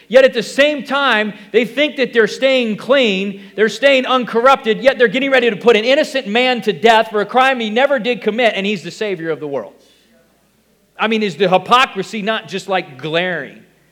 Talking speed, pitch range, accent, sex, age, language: 205 wpm, 140-210 Hz, American, male, 40-59, English